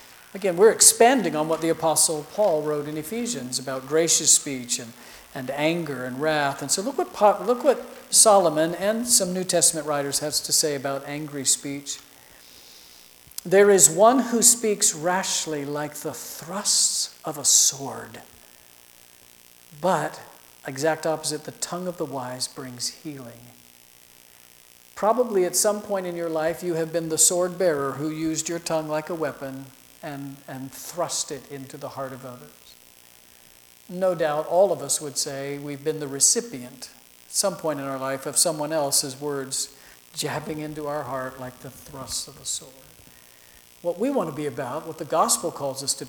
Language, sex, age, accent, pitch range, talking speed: English, male, 50-69, American, 135-175 Hz, 170 wpm